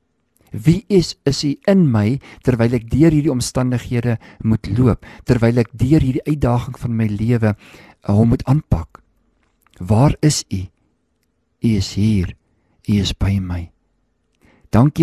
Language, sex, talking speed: English, male, 140 wpm